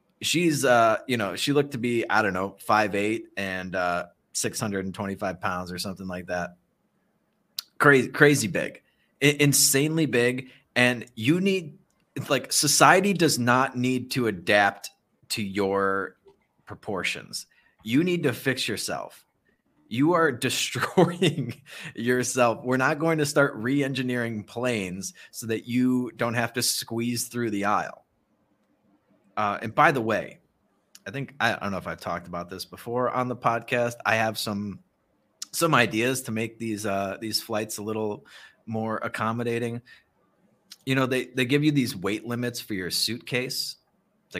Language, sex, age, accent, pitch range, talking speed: English, male, 30-49, American, 105-135 Hz, 155 wpm